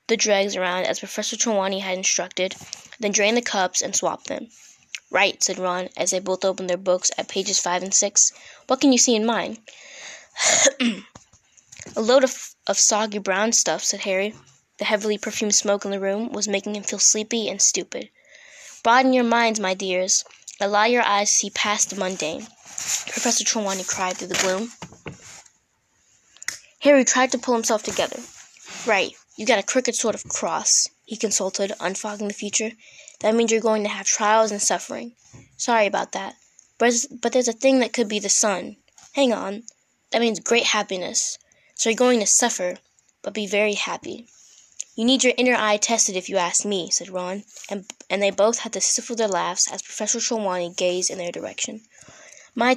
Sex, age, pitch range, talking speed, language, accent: female, 10-29, 195-235 Hz, 185 wpm, English, American